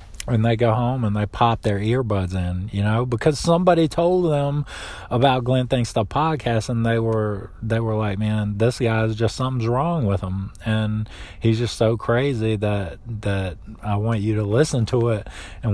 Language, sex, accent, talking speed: English, male, American, 195 wpm